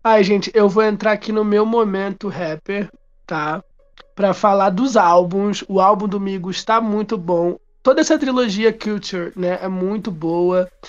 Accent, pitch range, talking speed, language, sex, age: Brazilian, 180-225 Hz, 165 wpm, Portuguese, male, 20-39